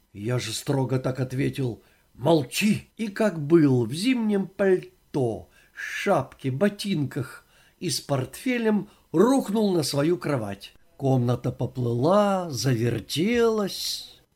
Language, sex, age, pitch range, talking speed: Russian, male, 50-69, 140-205 Hz, 100 wpm